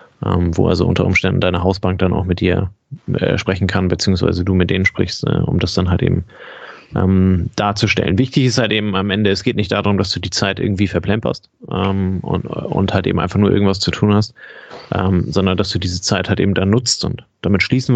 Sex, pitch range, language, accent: male, 95-110 Hz, German, German